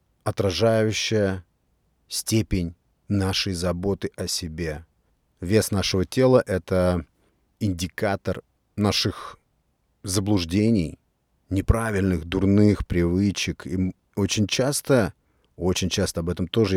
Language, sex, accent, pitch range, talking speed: Russian, male, native, 85-105 Hz, 90 wpm